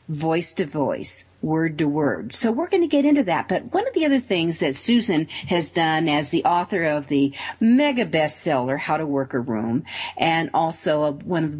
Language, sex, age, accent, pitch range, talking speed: English, female, 50-69, American, 155-225 Hz, 205 wpm